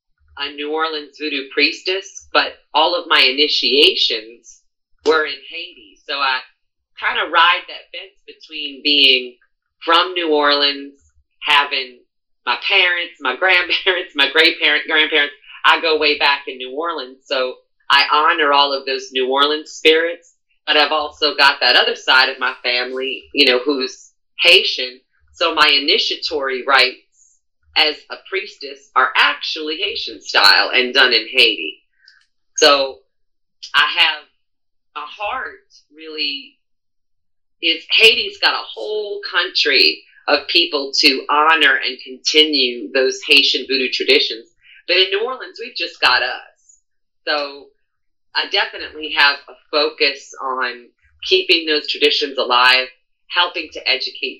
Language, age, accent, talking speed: English, 30-49, American, 135 wpm